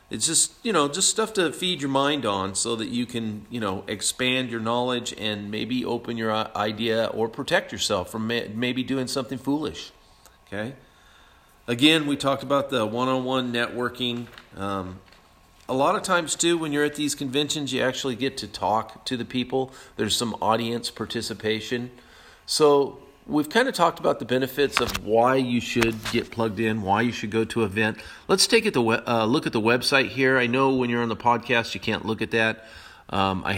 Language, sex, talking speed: English, male, 195 wpm